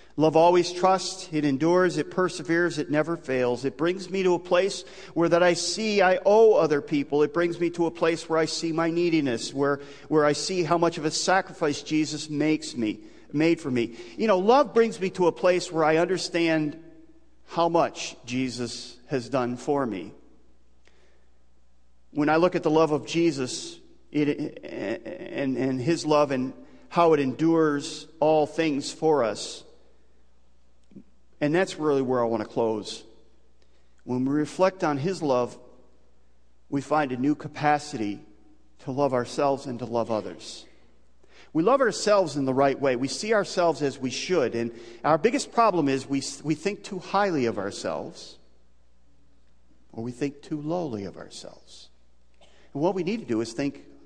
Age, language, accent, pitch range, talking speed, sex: 40-59, English, American, 125-170 Hz, 170 wpm, male